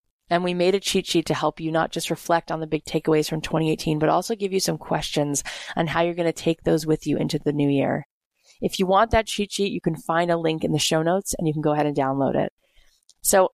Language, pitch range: English, 160-190 Hz